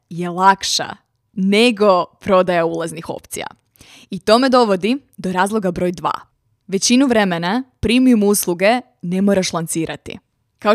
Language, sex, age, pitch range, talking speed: Croatian, female, 20-39, 180-210 Hz, 125 wpm